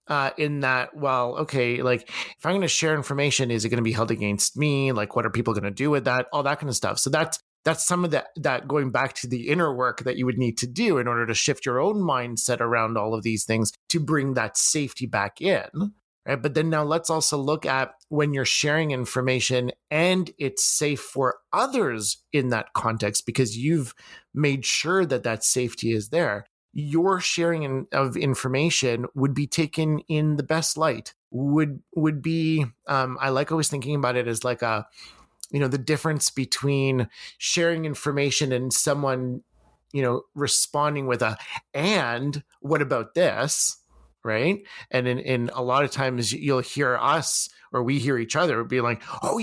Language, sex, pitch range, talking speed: English, male, 125-155 Hz, 195 wpm